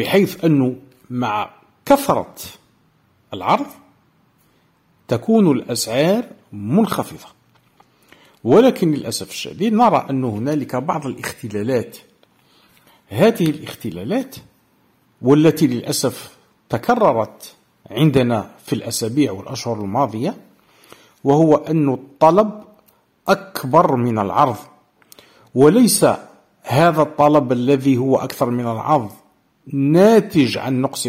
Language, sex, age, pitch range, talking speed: Arabic, male, 50-69, 125-165 Hz, 85 wpm